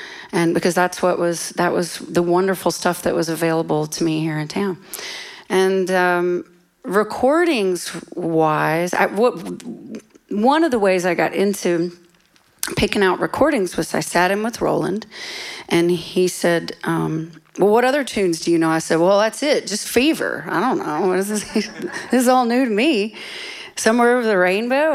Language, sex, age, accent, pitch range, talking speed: English, female, 40-59, American, 170-220 Hz, 170 wpm